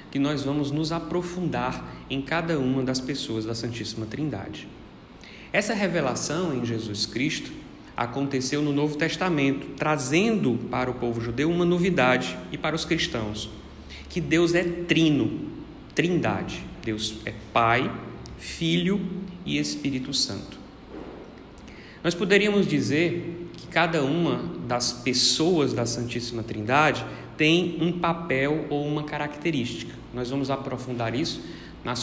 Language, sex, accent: Portuguese, male, Brazilian